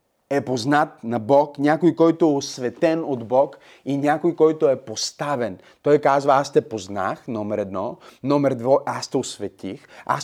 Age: 30-49